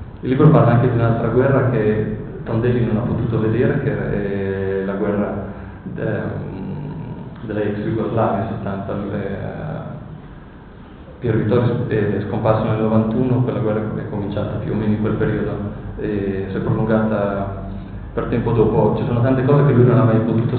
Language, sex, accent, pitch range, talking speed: Italian, male, native, 105-120 Hz, 165 wpm